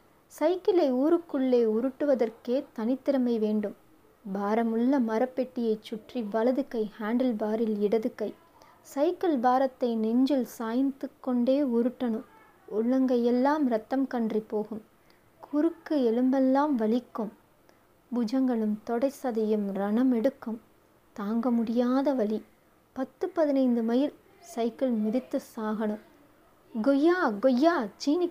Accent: native